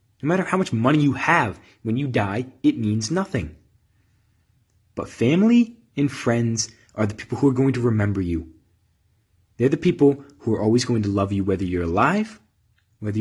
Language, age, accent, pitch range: English, 20-39, American, 95-120 Hz